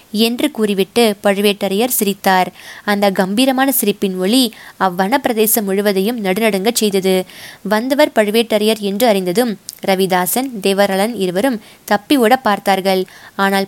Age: 20-39